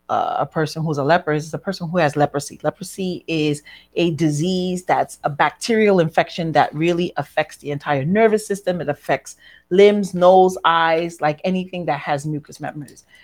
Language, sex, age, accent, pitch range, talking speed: English, female, 40-59, American, 145-185 Hz, 170 wpm